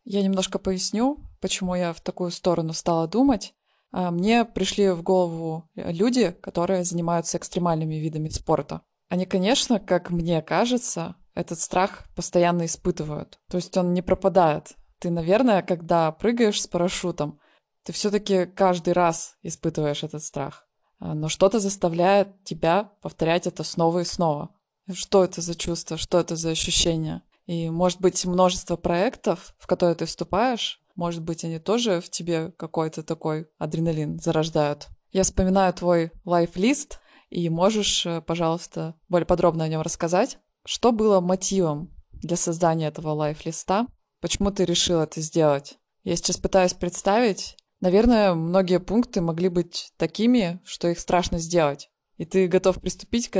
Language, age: Russian, 20-39